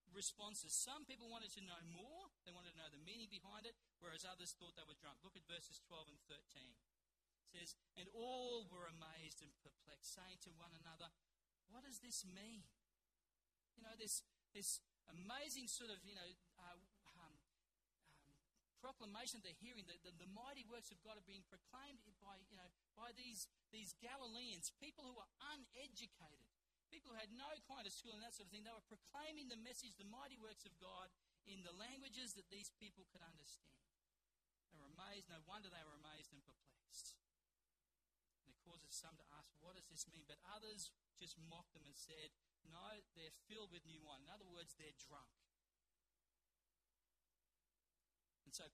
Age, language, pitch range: 40-59, English, 165-220 Hz